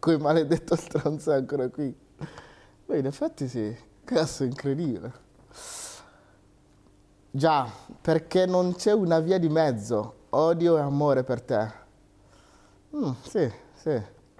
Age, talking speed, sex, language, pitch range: 30-49, 115 wpm, male, Italian, 115-165 Hz